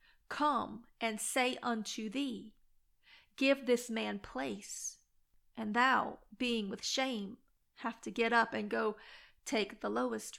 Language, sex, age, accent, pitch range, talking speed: English, female, 30-49, American, 215-245 Hz, 135 wpm